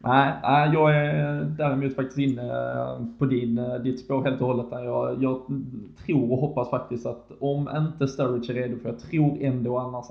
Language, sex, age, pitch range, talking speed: Swedish, male, 20-39, 120-130 Hz, 180 wpm